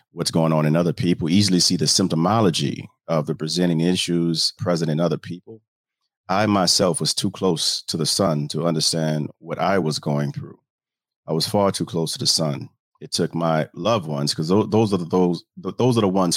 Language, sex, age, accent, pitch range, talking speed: English, male, 40-59, American, 80-95 Hz, 190 wpm